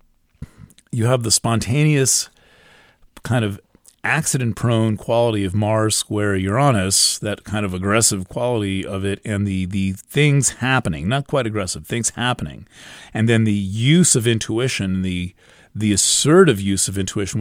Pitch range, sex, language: 100-125 Hz, male, English